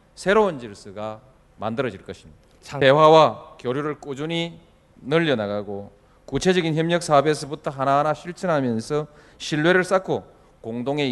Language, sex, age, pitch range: Korean, male, 40-59, 110-155 Hz